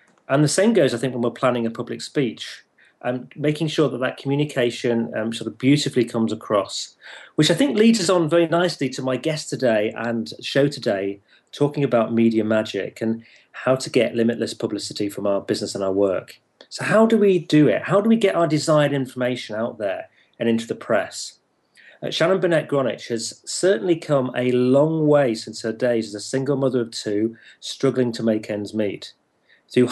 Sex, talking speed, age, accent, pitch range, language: male, 195 wpm, 30-49, British, 115-150 Hz, English